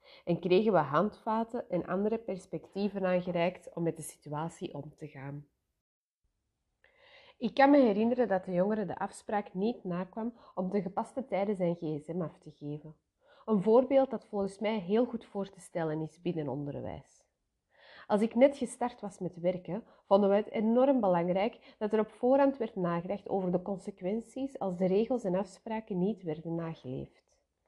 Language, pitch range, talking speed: Dutch, 170-225 Hz, 165 wpm